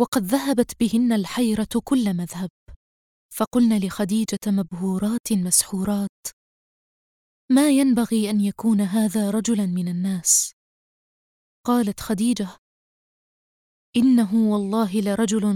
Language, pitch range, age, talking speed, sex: Arabic, 200-240 Hz, 20-39, 90 wpm, female